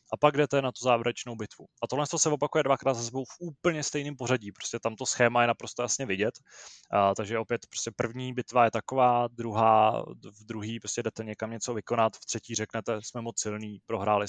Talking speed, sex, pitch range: 205 wpm, male, 110-120 Hz